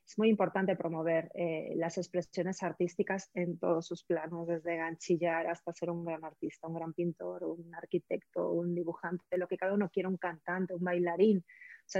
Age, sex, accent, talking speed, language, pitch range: 30-49, female, Spanish, 185 wpm, Spanish, 175-220 Hz